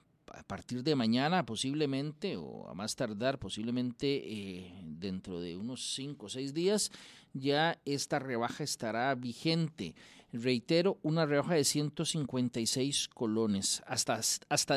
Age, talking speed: 40-59, 125 wpm